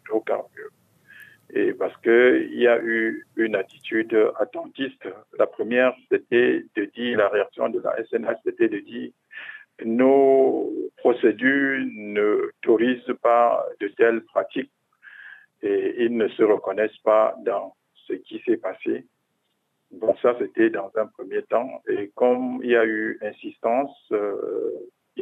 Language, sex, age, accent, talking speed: French, male, 50-69, French, 135 wpm